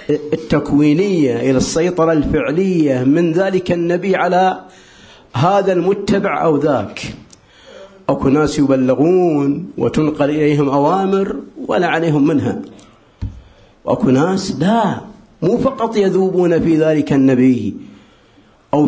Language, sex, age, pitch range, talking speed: Arabic, male, 50-69, 135-190 Hz, 100 wpm